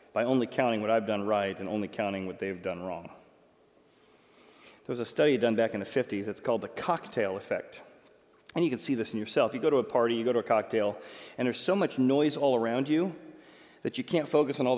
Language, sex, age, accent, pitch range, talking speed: English, male, 40-59, American, 115-160 Hz, 240 wpm